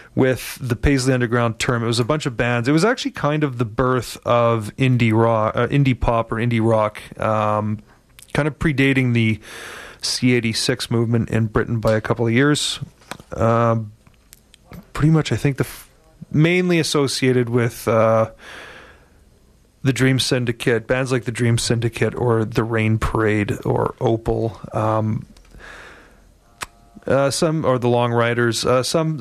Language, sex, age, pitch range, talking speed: English, male, 30-49, 110-130 Hz, 150 wpm